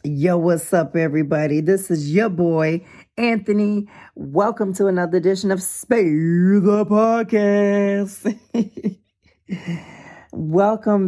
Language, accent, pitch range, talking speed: English, American, 150-185 Hz, 95 wpm